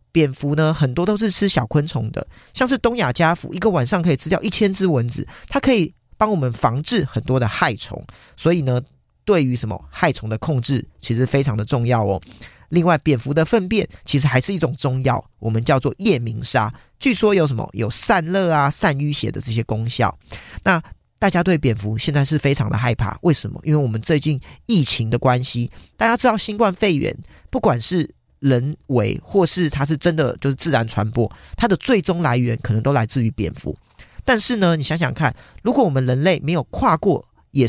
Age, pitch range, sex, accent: 40-59, 125-180 Hz, male, American